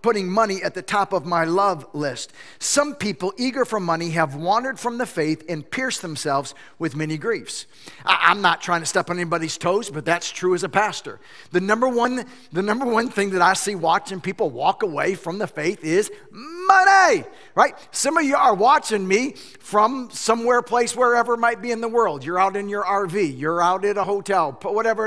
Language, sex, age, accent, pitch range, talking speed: English, male, 50-69, American, 170-235 Hz, 200 wpm